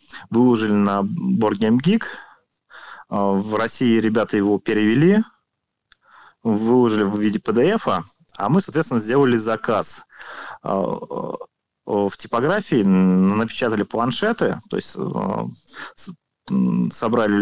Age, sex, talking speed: 30-49, male, 85 wpm